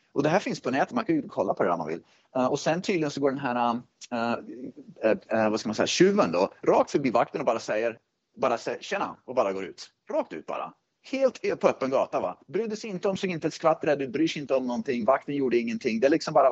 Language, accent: Swedish, native